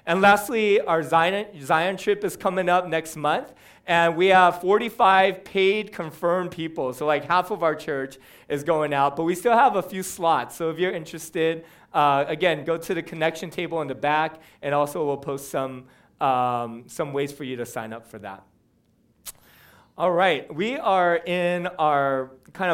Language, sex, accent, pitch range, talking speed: English, male, American, 140-185 Hz, 185 wpm